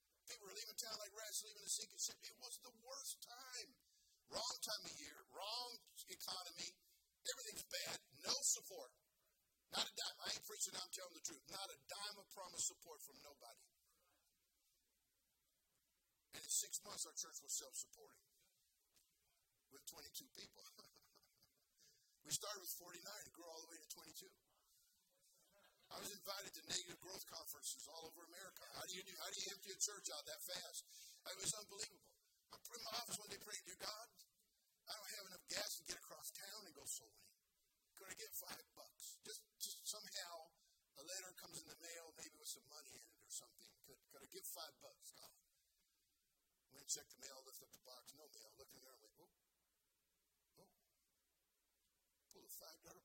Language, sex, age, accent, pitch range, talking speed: English, male, 50-69, American, 165-215 Hz, 185 wpm